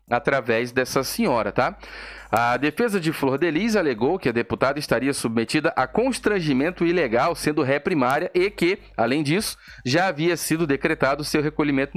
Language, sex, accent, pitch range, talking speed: Portuguese, male, Brazilian, 130-190 Hz, 155 wpm